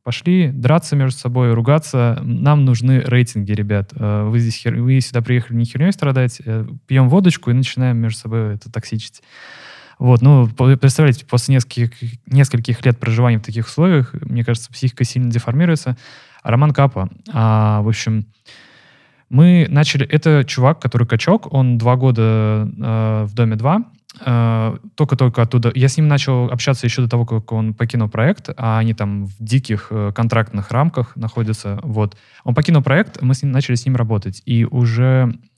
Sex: male